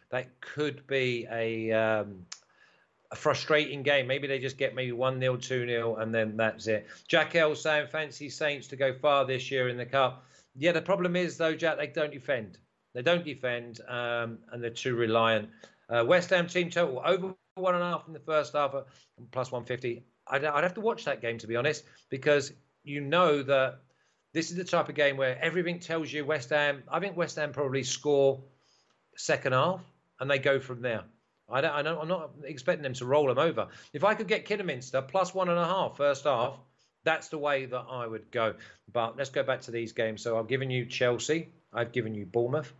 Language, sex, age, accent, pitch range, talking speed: English, male, 40-59, British, 120-155 Hz, 205 wpm